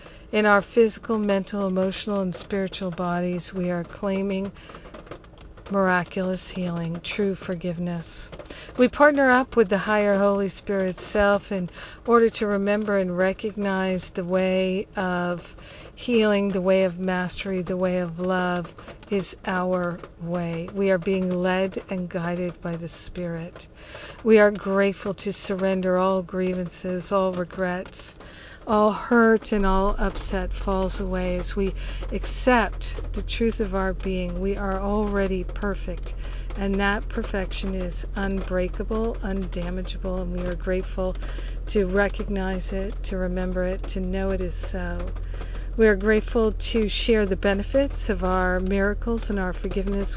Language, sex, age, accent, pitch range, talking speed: English, female, 50-69, American, 180-200 Hz, 140 wpm